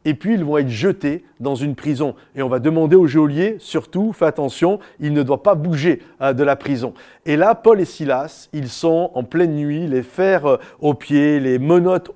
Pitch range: 145-190 Hz